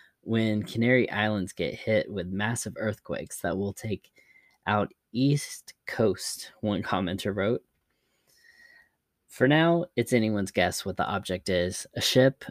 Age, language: 20-39, English